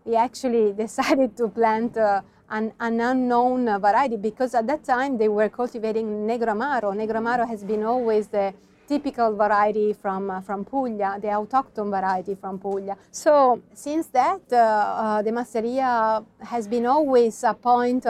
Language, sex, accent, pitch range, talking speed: English, female, Italian, 210-250 Hz, 150 wpm